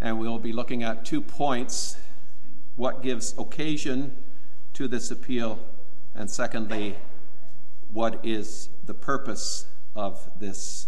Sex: male